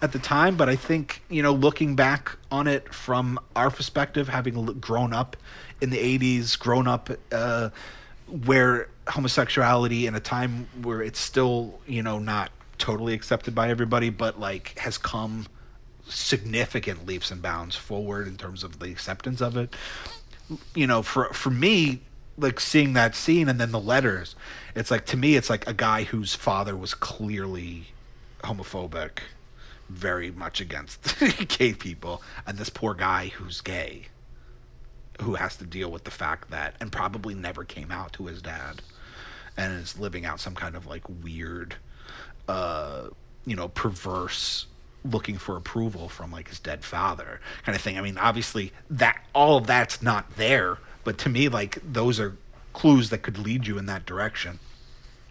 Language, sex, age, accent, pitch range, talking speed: English, male, 30-49, American, 95-125 Hz, 165 wpm